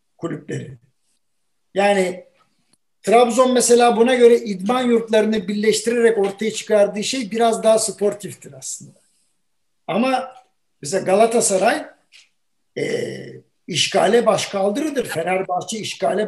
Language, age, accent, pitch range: Turkish, 60-79, native, 205-250 Hz